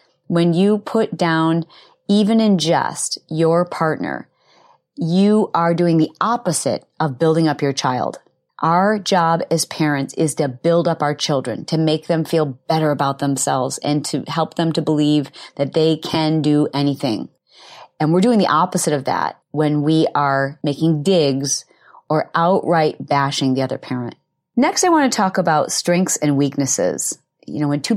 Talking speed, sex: 165 wpm, female